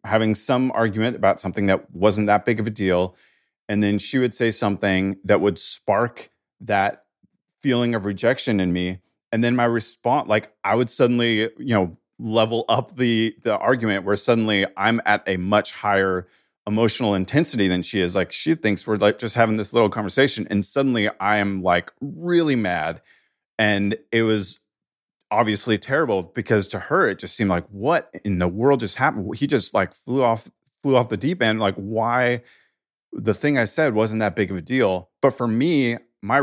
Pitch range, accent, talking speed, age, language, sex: 100-120 Hz, American, 190 wpm, 30-49, English, male